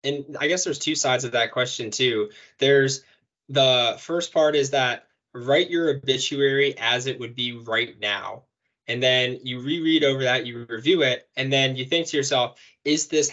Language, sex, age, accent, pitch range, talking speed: English, male, 20-39, American, 115-145 Hz, 190 wpm